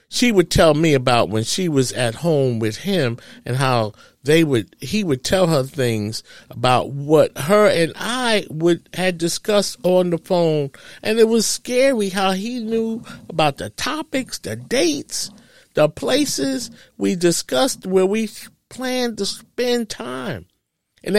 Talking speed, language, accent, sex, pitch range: 155 wpm, English, American, male, 145-205 Hz